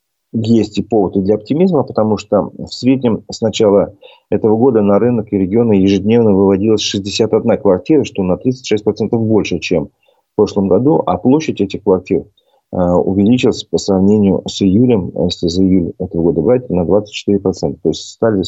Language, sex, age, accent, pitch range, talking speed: Russian, male, 40-59, native, 95-110 Hz, 160 wpm